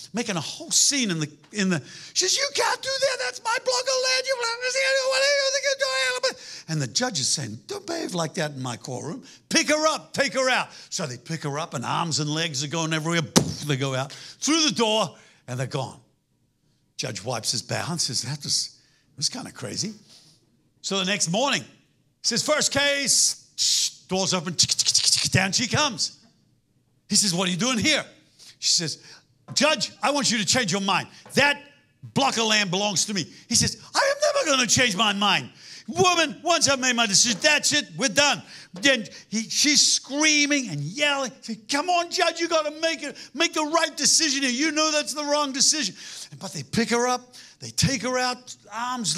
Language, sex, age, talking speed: English, male, 60-79, 200 wpm